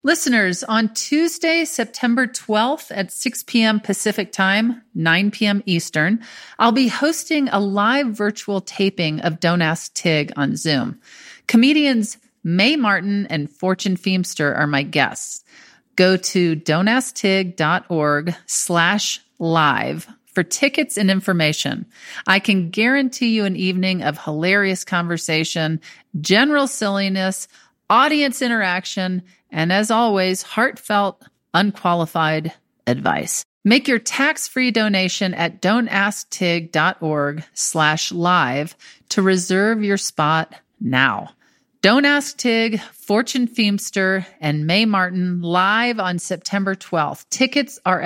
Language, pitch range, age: English, 175-235 Hz, 40-59